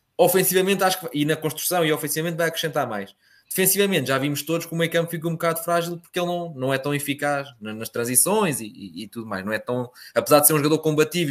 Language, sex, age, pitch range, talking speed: Portuguese, male, 20-39, 125-160 Hz, 245 wpm